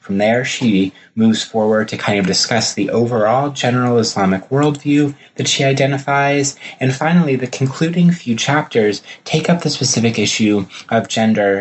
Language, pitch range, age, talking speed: English, 105-145 Hz, 30-49, 155 wpm